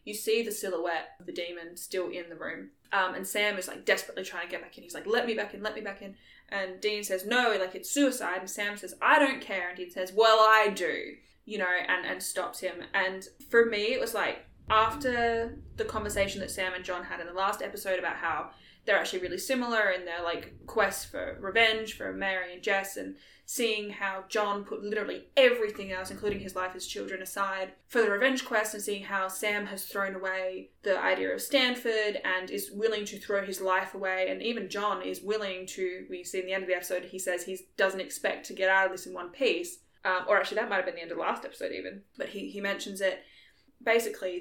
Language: English